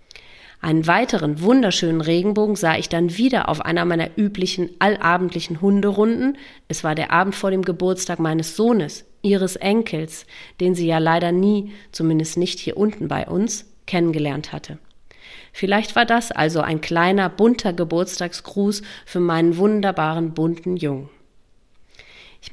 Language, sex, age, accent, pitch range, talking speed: German, female, 30-49, German, 165-205 Hz, 140 wpm